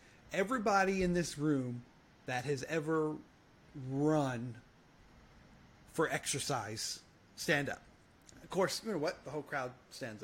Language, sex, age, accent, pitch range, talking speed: English, male, 30-49, American, 130-170 Hz, 125 wpm